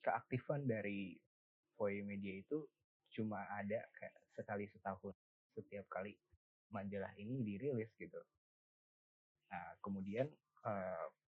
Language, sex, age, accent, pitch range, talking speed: Indonesian, male, 20-39, native, 95-115 Hz, 95 wpm